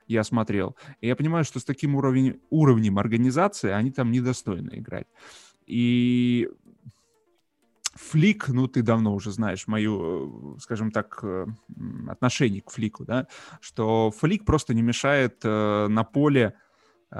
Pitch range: 105-130 Hz